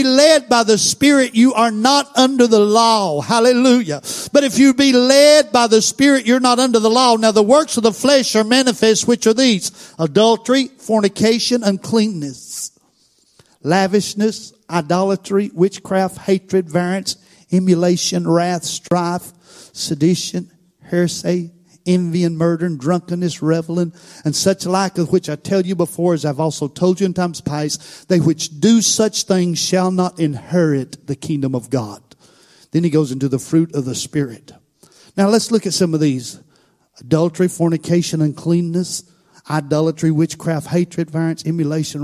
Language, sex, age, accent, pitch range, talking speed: English, male, 50-69, American, 155-215 Hz, 155 wpm